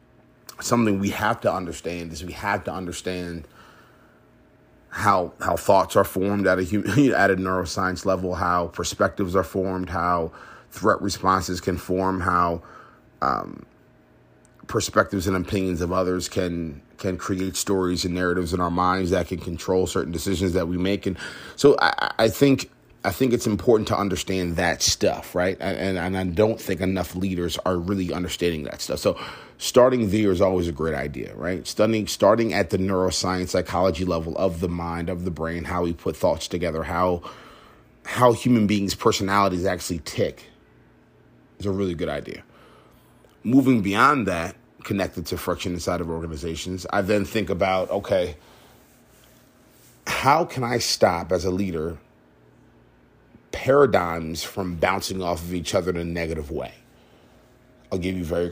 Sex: male